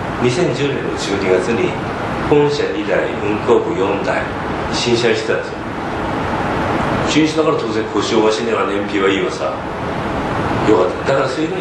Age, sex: 40-59, male